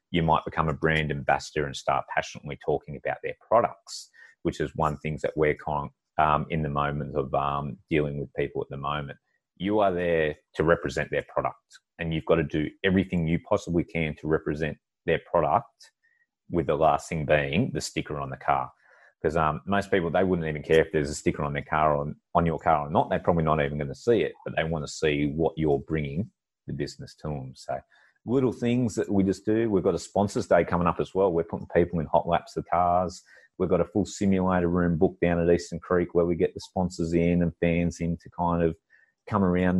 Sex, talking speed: male, 230 wpm